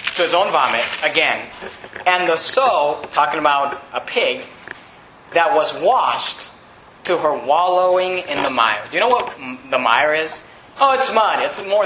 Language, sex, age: English, male, 30-49